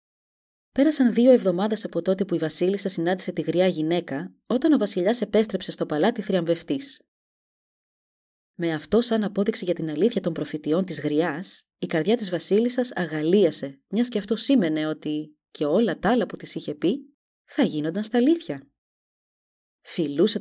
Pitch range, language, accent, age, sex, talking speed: 165-230 Hz, Greek, native, 20-39, female, 155 wpm